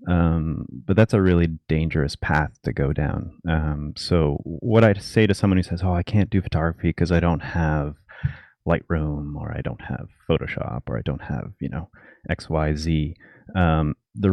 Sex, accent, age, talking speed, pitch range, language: male, American, 30-49, 180 wpm, 80-100 Hz, English